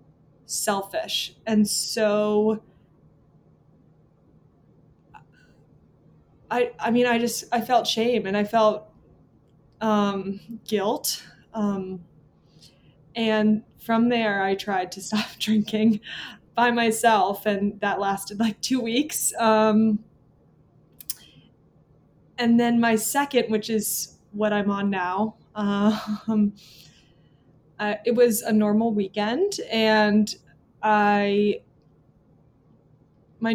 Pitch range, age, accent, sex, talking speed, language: 205-225 Hz, 20-39, American, female, 100 wpm, English